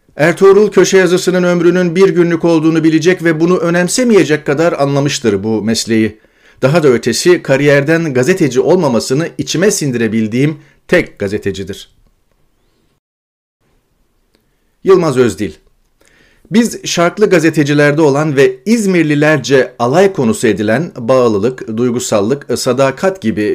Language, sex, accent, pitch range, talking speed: Turkish, male, native, 120-165 Hz, 100 wpm